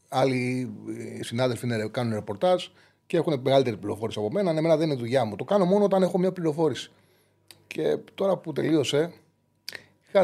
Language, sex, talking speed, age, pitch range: Greek, male, 165 wpm, 30-49, 115-160 Hz